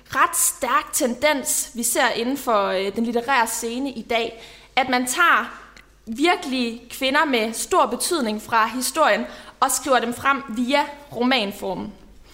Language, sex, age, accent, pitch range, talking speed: Danish, female, 20-39, native, 225-280 Hz, 135 wpm